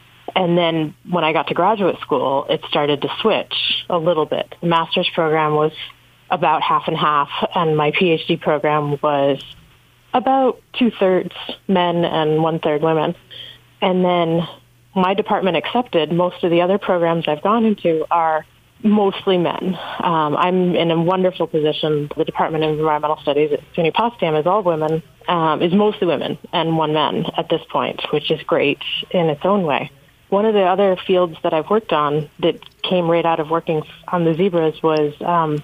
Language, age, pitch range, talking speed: English, 30-49, 155-180 Hz, 175 wpm